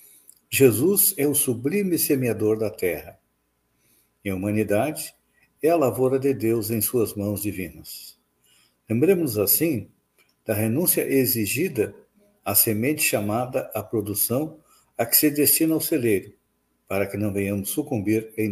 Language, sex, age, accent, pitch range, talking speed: Portuguese, male, 60-79, Brazilian, 85-125 Hz, 135 wpm